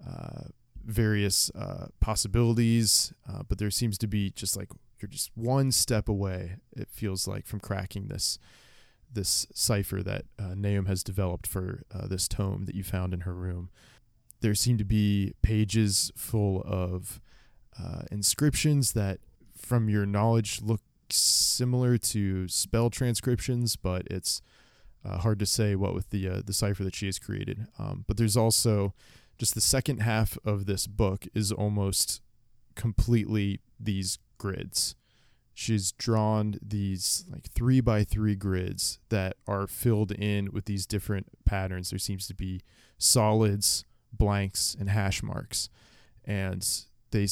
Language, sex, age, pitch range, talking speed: English, male, 20-39, 95-115 Hz, 150 wpm